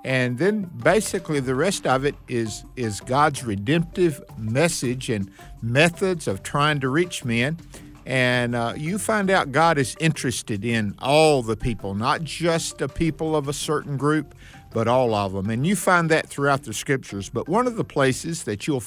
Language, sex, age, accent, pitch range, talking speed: English, male, 50-69, American, 120-165 Hz, 180 wpm